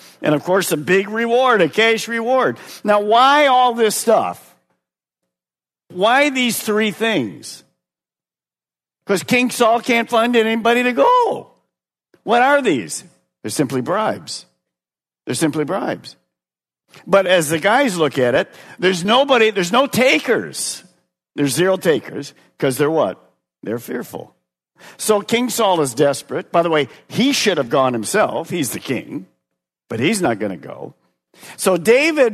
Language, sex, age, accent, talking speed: English, male, 50-69, American, 145 wpm